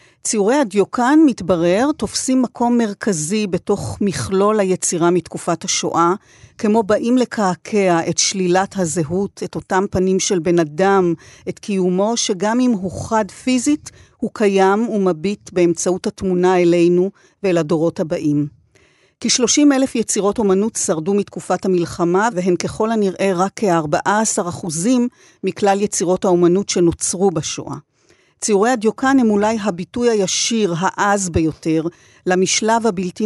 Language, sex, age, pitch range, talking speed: Hebrew, female, 50-69, 175-220 Hz, 120 wpm